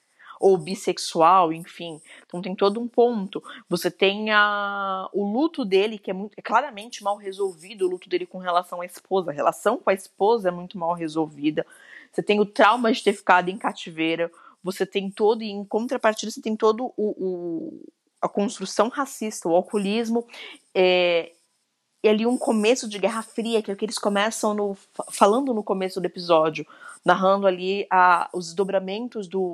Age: 20-39